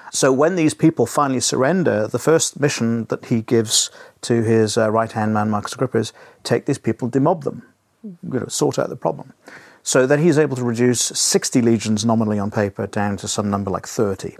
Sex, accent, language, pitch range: male, British, English, 105-130 Hz